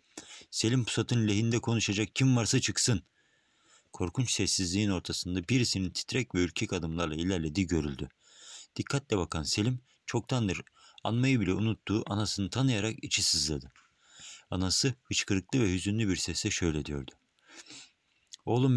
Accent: native